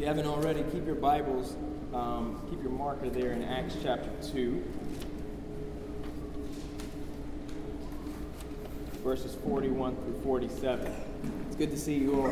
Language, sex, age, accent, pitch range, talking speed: English, male, 20-39, American, 130-160 Hz, 125 wpm